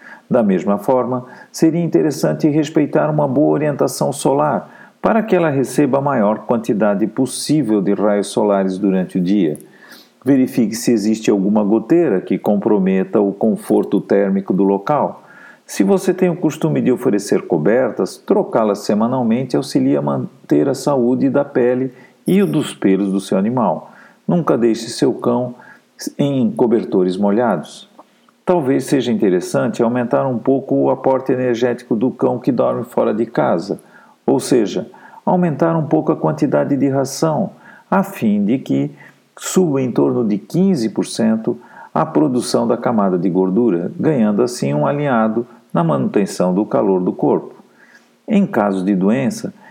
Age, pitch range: 50-69, 100-155 Hz